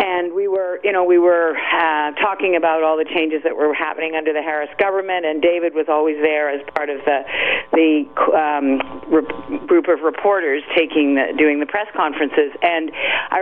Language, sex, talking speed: English, female, 190 wpm